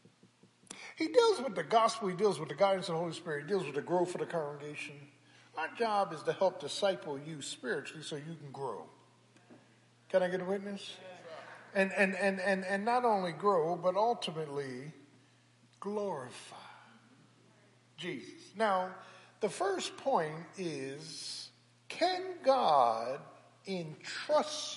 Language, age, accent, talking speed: English, 50-69, American, 140 wpm